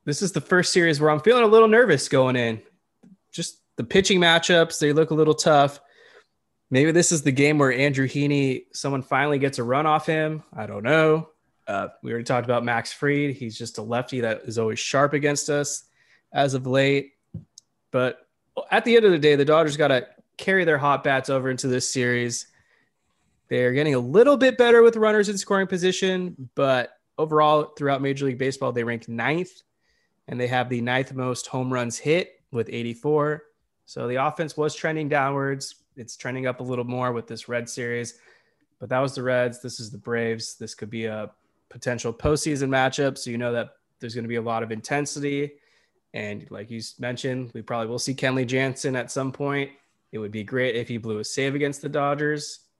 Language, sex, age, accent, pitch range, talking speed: English, male, 20-39, American, 120-150 Hz, 200 wpm